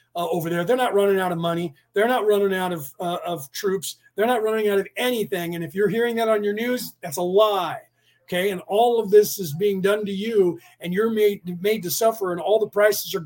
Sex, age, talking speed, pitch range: male, 40-59, 250 wpm, 175-220 Hz